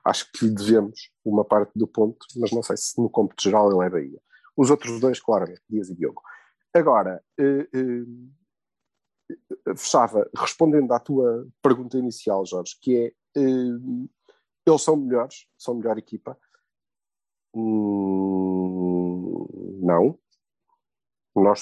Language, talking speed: Portuguese, 130 wpm